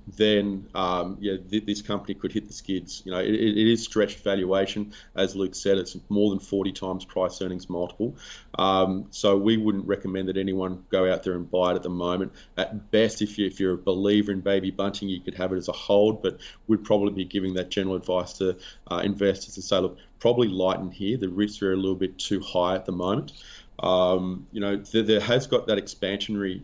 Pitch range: 95-100 Hz